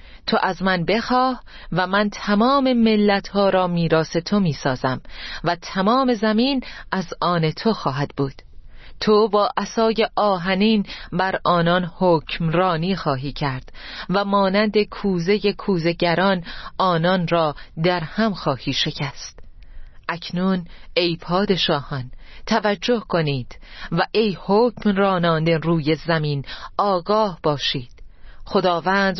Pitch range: 165-210 Hz